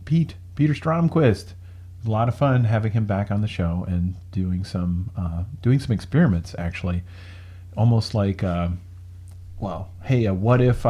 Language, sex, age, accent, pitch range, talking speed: English, male, 40-59, American, 90-110 Hz, 160 wpm